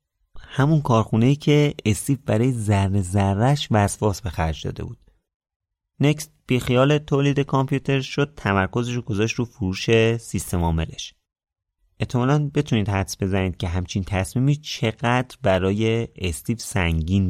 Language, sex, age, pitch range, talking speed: Persian, male, 30-49, 90-120 Hz, 125 wpm